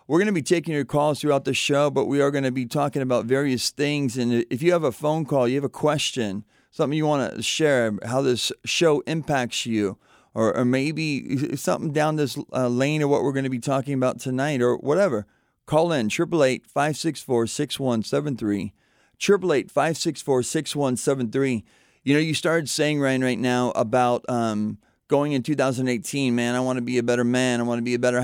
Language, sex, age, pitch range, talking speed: English, male, 40-59, 120-145 Hz, 195 wpm